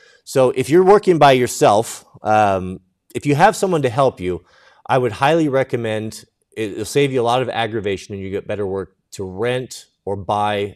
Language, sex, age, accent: English, male, 30-49, American